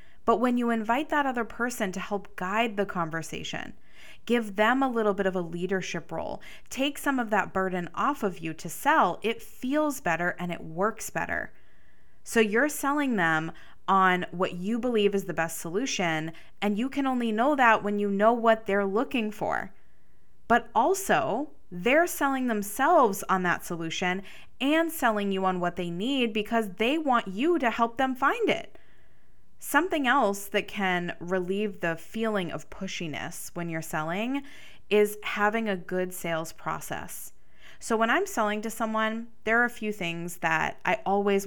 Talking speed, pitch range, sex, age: 170 wpm, 185-240 Hz, female, 20-39